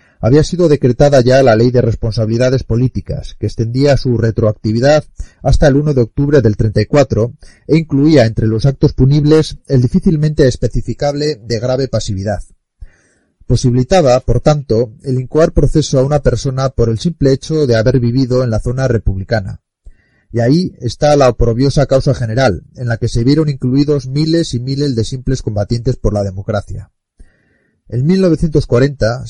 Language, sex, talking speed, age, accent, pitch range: Spanish, male, 155 wpm, 30-49, Spanish, 115-145 Hz